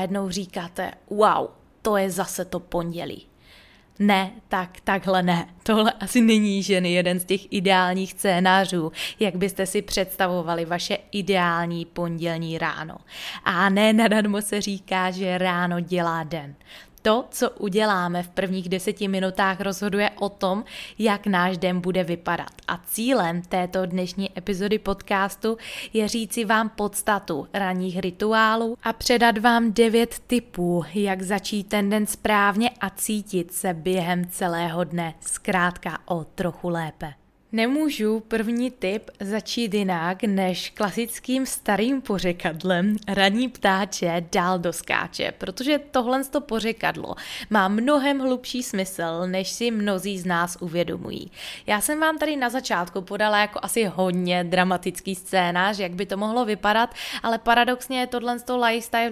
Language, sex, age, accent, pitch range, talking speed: Czech, female, 20-39, native, 185-225 Hz, 140 wpm